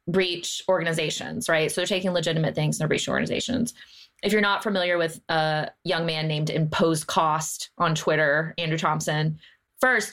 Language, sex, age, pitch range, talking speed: English, female, 20-39, 160-195 Hz, 165 wpm